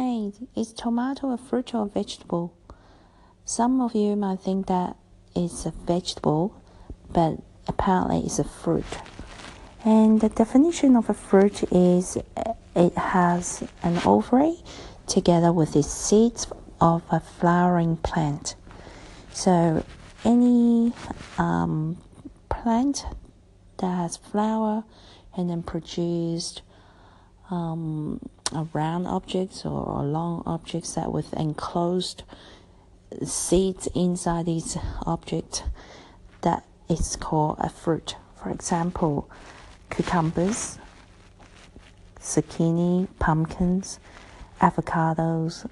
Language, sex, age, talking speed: English, female, 50-69, 95 wpm